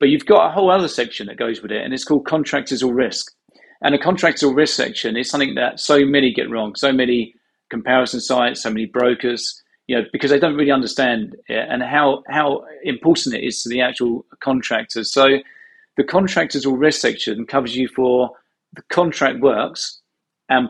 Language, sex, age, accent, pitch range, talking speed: English, male, 40-59, British, 125-150 Hz, 195 wpm